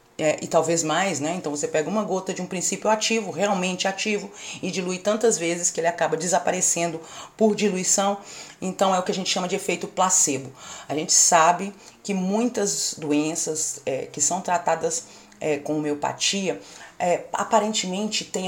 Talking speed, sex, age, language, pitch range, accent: 155 wpm, female, 40-59, Portuguese, 160-205 Hz, Brazilian